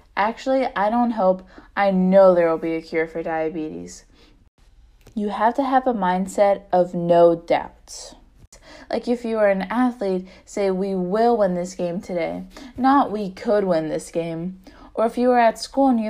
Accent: American